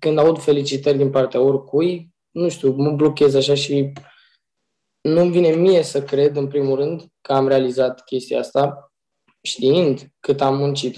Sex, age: male, 20-39